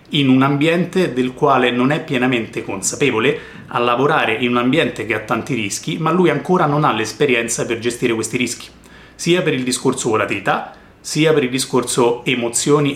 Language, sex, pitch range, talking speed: Italian, male, 120-160 Hz, 175 wpm